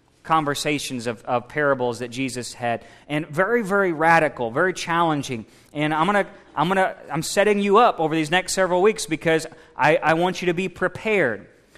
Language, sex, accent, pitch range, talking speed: English, male, American, 150-195 Hz, 190 wpm